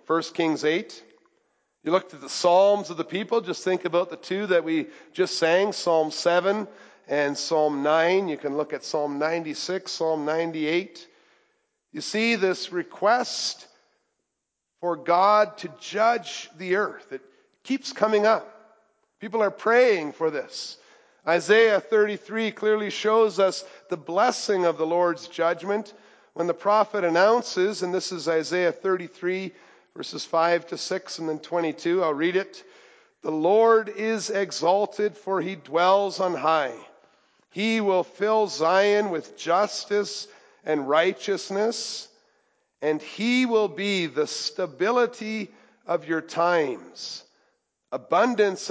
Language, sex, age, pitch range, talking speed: English, male, 50-69, 170-215 Hz, 135 wpm